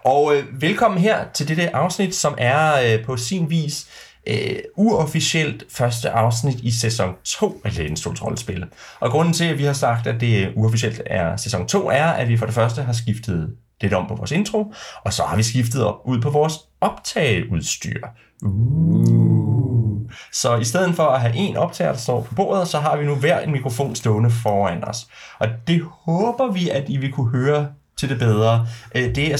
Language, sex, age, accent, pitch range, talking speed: Danish, male, 30-49, native, 110-150 Hz, 200 wpm